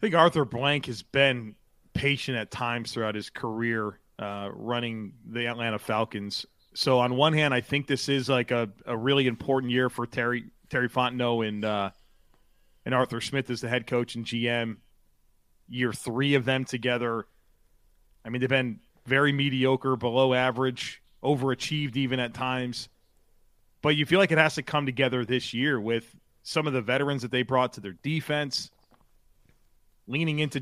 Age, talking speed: 30-49, 170 wpm